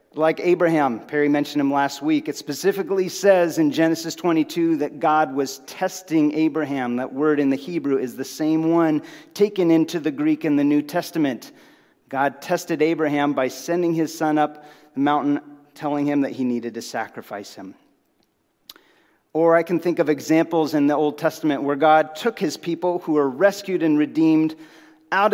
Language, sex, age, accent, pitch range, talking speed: English, male, 40-59, American, 140-170 Hz, 175 wpm